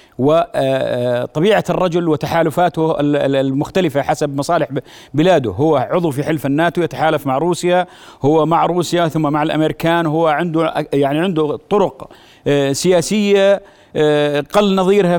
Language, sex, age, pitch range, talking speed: Arabic, male, 40-59, 150-190 Hz, 115 wpm